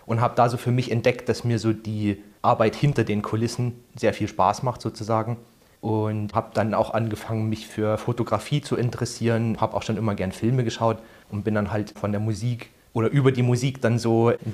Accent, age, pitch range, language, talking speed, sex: German, 30-49, 105-120 Hz, German, 210 wpm, male